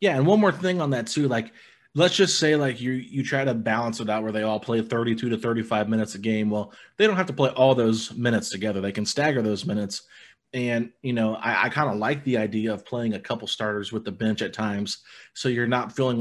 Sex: male